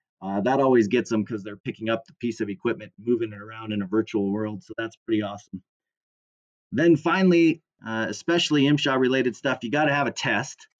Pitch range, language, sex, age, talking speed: 115-140 Hz, English, male, 30-49, 205 wpm